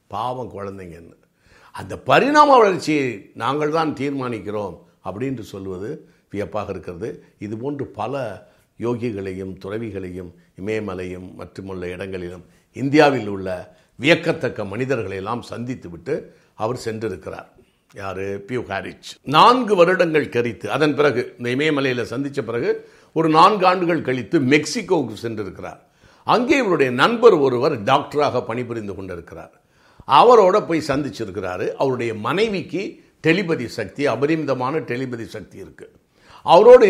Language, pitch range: Tamil, 110-150 Hz